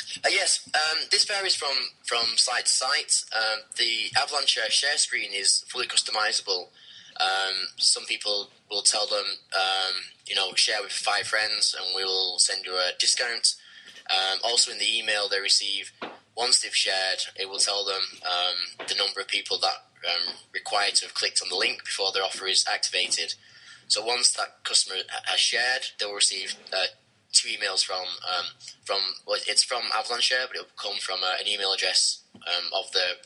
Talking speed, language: 185 wpm, English